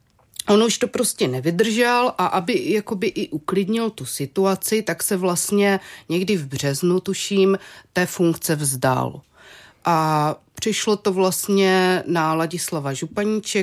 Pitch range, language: 165-205 Hz, Czech